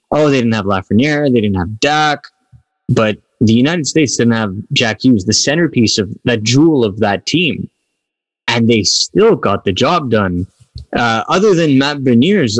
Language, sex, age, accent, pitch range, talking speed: English, male, 20-39, American, 115-150 Hz, 175 wpm